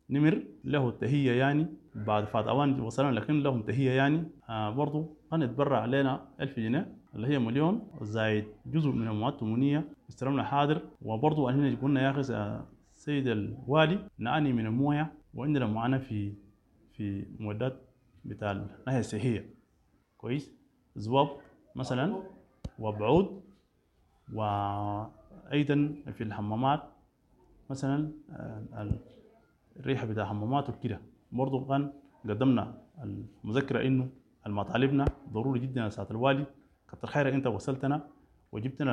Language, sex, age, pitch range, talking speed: English, male, 30-49, 110-145 Hz, 105 wpm